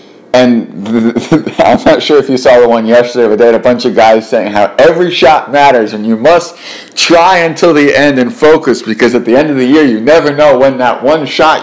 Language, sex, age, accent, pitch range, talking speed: English, male, 50-69, American, 110-150 Hz, 230 wpm